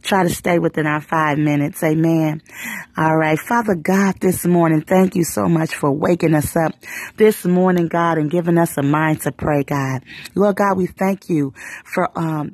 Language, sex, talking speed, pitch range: English, female, 190 wpm, 155-200 Hz